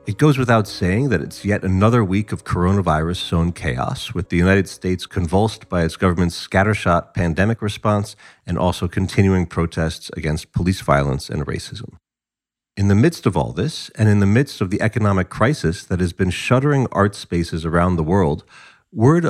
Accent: American